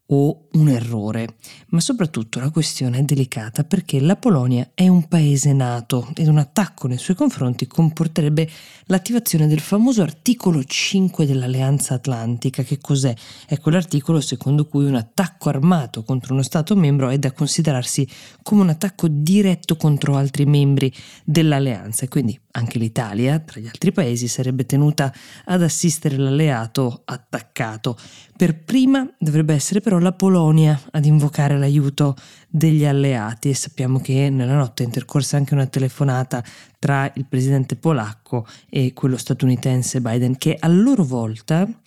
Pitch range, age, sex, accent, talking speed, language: 130-160 Hz, 20-39, female, native, 150 wpm, Italian